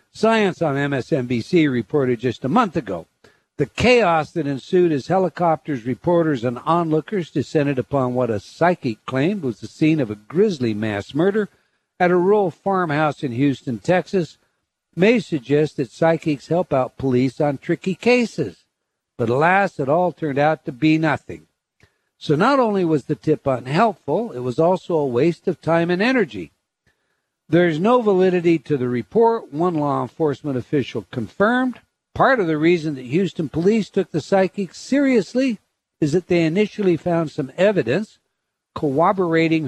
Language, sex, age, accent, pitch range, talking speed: English, male, 60-79, American, 140-190 Hz, 155 wpm